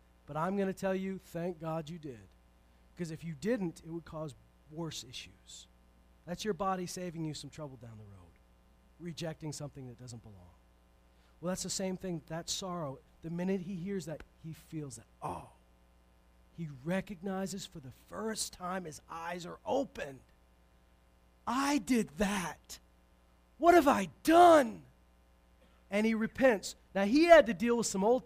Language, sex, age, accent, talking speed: English, male, 40-59, American, 165 wpm